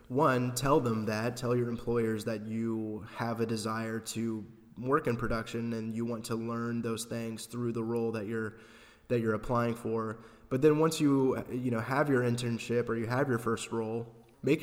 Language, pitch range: English, 115-130 Hz